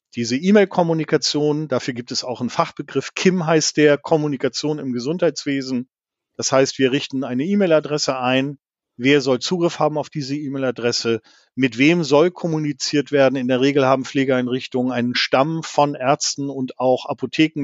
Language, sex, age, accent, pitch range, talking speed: German, male, 40-59, German, 130-160 Hz, 155 wpm